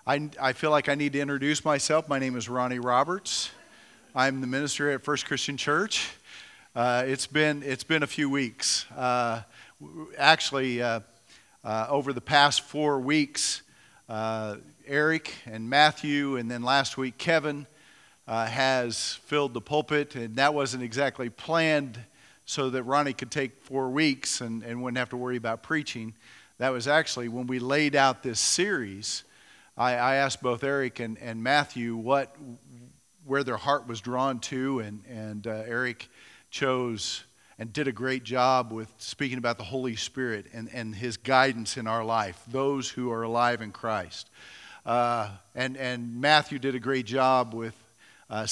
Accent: American